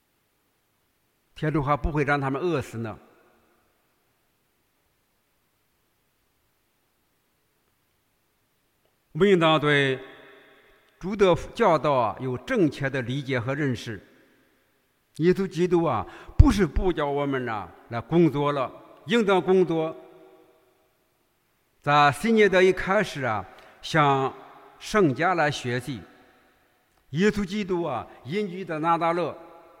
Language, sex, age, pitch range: English, male, 60-79, 135-180 Hz